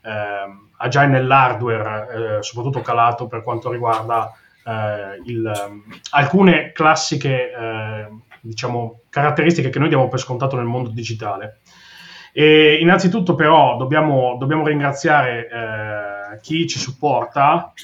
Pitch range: 115-145 Hz